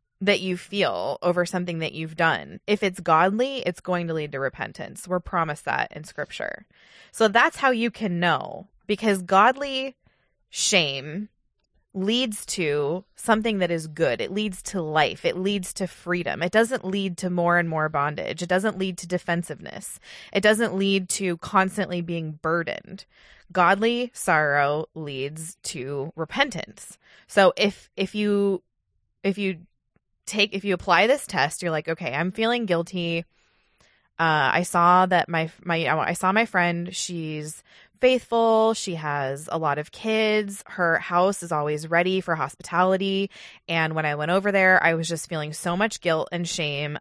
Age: 20-39